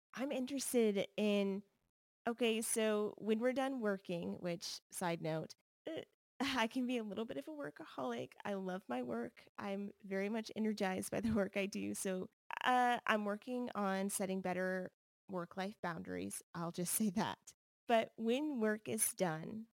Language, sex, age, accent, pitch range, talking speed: English, female, 20-39, American, 185-220 Hz, 160 wpm